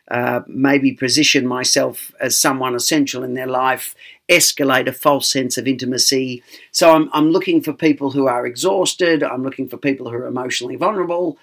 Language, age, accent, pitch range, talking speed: English, 50-69, Australian, 125-150 Hz, 175 wpm